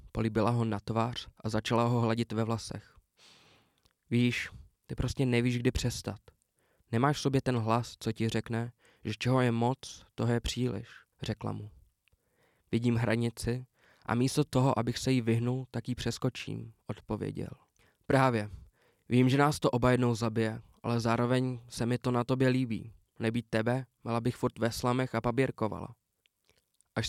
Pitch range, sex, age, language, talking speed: 110-125 Hz, male, 20-39, Czech, 160 wpm